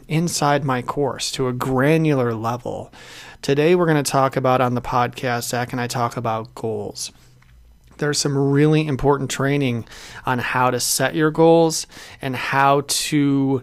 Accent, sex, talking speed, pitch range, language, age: American, male, 160 wpm, 130-150 Hz, English, 30-49